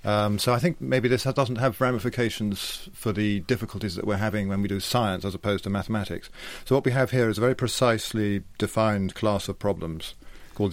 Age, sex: 40-59, male